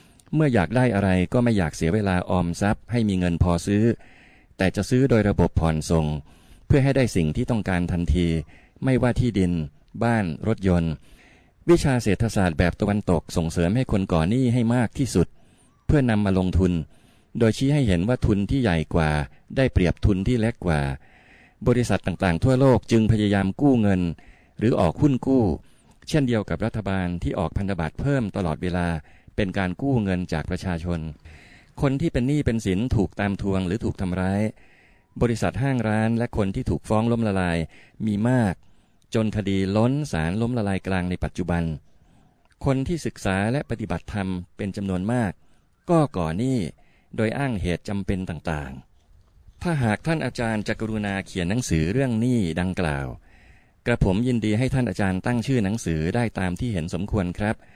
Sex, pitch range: male, 90-120 Hz